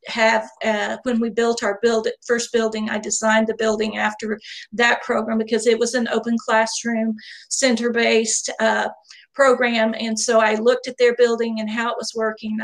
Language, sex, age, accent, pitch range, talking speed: English, female, 40-59, American, 220-245 Hz, 175 wpm